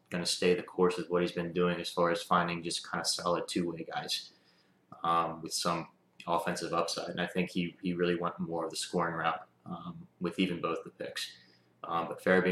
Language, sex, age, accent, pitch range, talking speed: English, male, 20-39, American, 85-100 Hz, 220 wpm